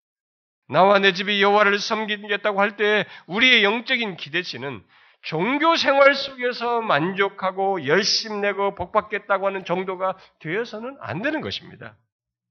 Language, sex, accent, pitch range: Korean, male, native, 175-275 Hz